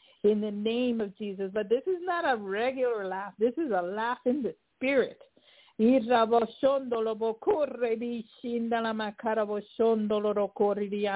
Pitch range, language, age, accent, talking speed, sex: 195-250 Hz, English, 50-69, American, 120 wpm, female